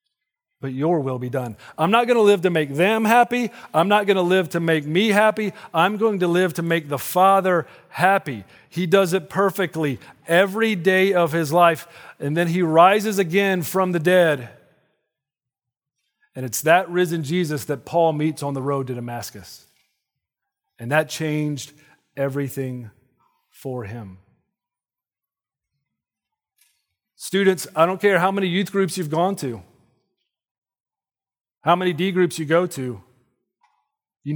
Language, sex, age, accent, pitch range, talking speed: English, male, 40-59, American, 135-180 Hz, 150 wpm